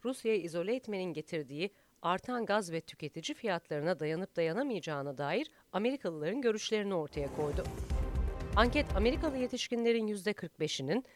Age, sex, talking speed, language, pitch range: 40-59, female, 115 wpm, Turkish, 155-225 Hz